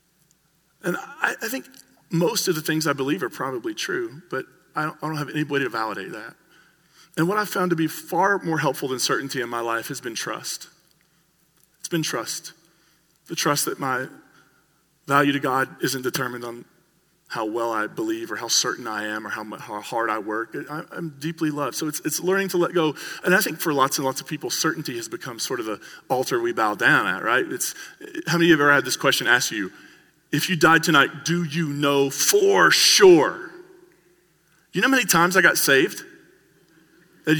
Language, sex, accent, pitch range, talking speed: English, male, American, 150-195 Hz, 210 wpm